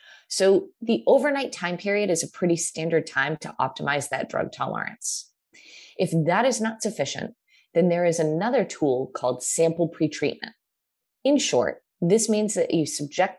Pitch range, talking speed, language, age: 155-230 Hz, 155 wpm, English, 20-39